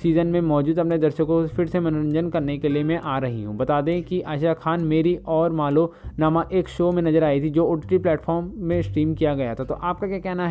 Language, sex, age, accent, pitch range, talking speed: Hindi, male, 20-39, native, 155-175 Hz, 250 wpm